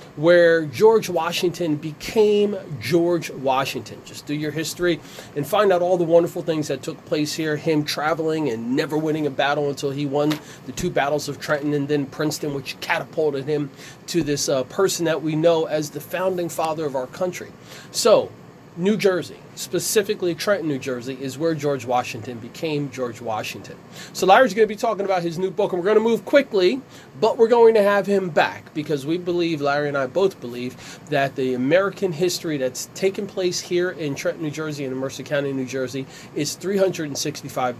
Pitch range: 140-185 Hz